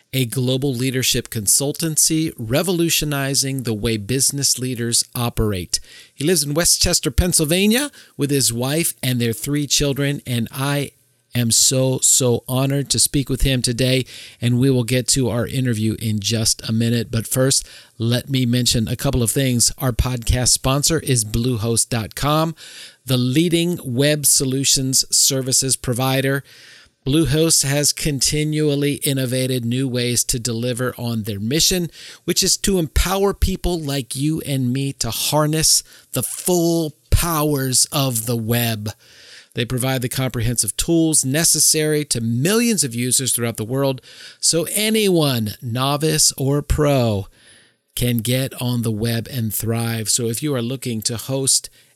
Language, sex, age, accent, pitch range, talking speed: English, male, 50-69, American, 120-145 Hz, 145 wpm